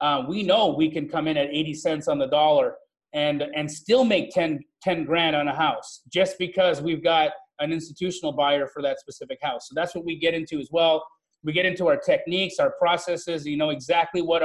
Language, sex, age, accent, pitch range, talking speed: English, male, 30-49, American, 155-175 Hz, 220 wpm